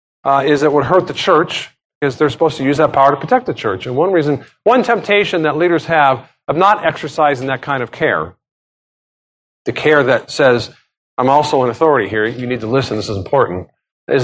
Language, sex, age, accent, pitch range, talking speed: English, male, 50-69, American, 130-160 Hz, 210 wpm